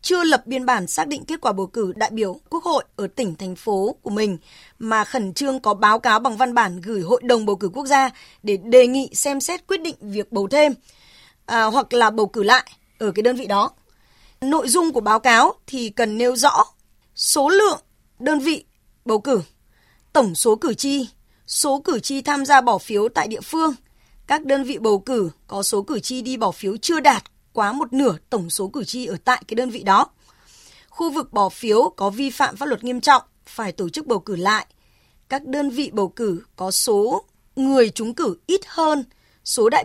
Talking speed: 215 wpm